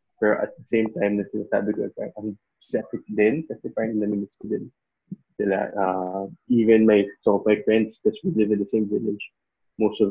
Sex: male